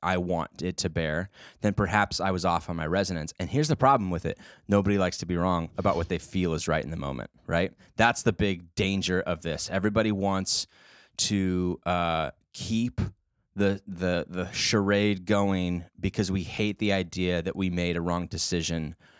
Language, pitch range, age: English, 90-105 Hz, 20-39